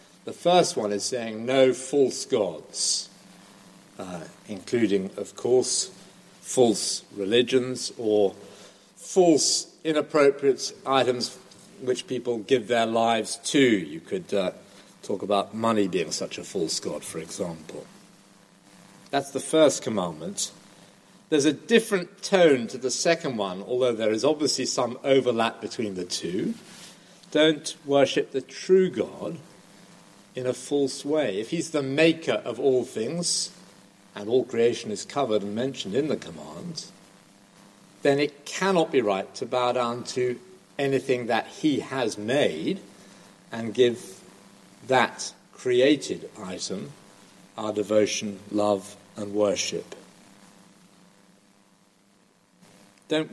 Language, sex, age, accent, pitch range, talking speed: English, male, 50-69, British, 115-170 Hz, 125 wpm